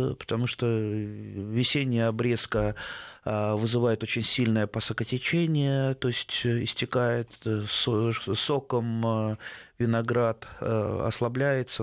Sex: male